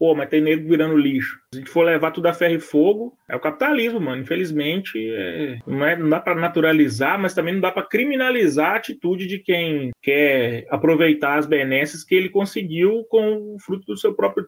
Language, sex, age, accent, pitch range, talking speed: Portuguese, male, 20-39, Brazilian, 140-185 Hz, 205 wpm